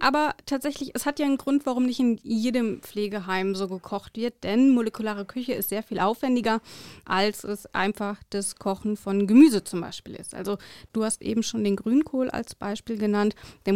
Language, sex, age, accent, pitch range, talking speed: German, female, 30-49, German, 205-255 Hz, 190 wpm